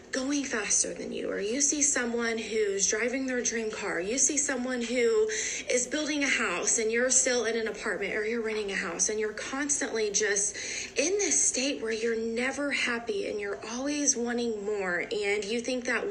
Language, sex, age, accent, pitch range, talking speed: English, female, 20-39, American, 215-260 Hz, 195 wpm